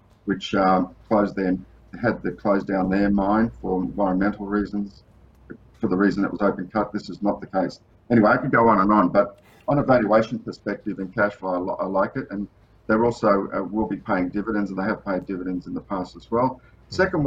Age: 50-69